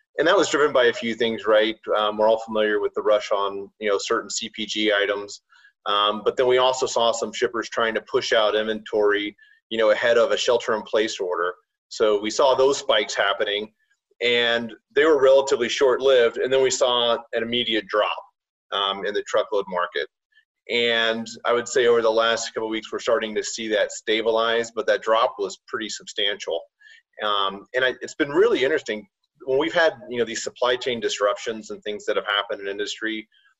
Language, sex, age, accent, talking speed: English, male, 30-49, American, 200 wpm